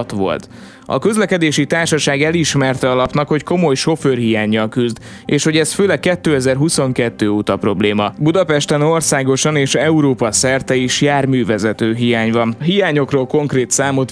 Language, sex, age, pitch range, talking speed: Hungarian, male, 20-39, 120-155 Hz, 125 wpm